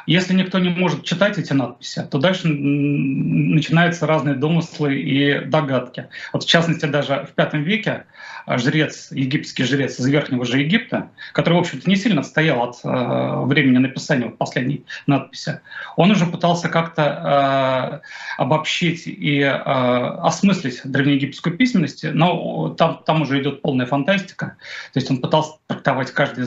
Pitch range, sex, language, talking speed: 140-170 Hz, male, Russian, 135 wpm